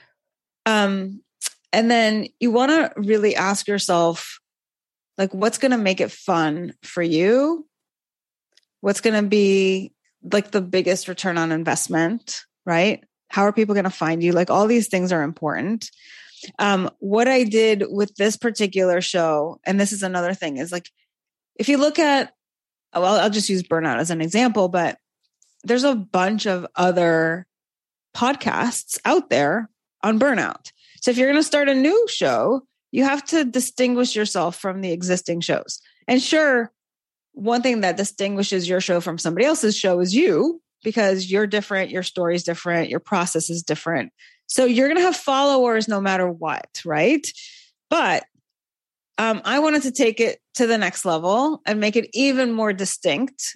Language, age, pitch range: English, 30-49, 180-250 Hz